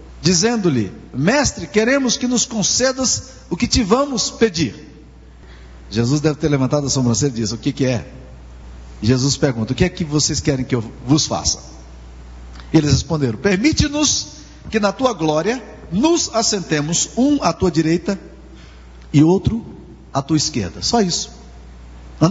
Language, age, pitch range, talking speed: Portuguese, 50-69, 130-195 Hz, 150 wpm